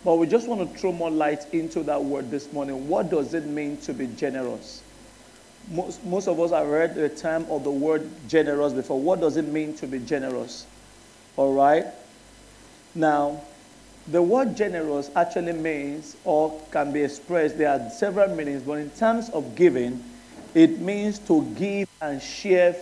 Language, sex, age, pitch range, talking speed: English, male, 50-69, 155-245 Hz, 175 wpm